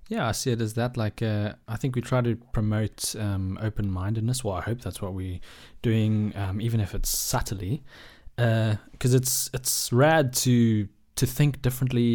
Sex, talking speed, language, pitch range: male, 185 wpm, English, 100-120 Hz